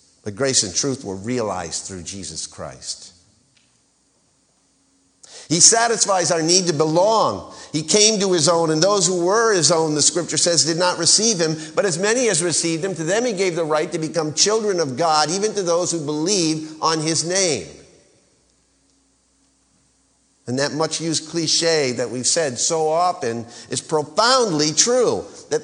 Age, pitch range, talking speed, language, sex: 50-69, 150-200 Hz, 170 wpm, English, male